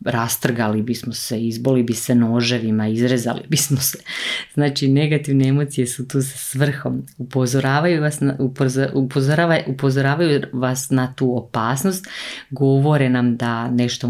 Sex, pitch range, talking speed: female, 120-140 Hz, 130 wpm